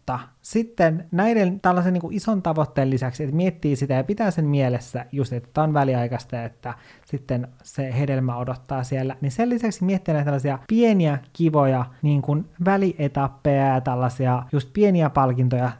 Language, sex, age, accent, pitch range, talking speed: Finnish, male, 20-39, native, 130-160 Hz, 150 wpm